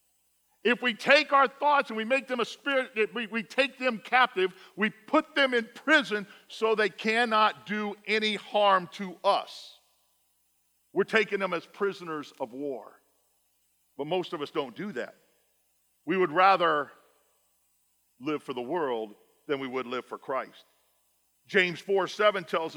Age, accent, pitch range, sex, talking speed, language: 50-69, American, 180-240 Hz, male, 160 wpm, English